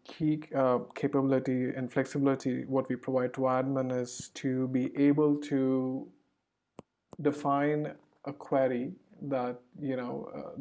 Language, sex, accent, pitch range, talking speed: English, male, Indian, 130-145 Hz, 125 wpm